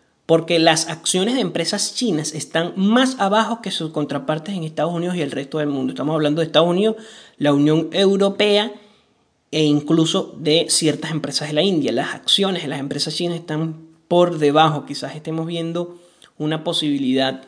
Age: 30-49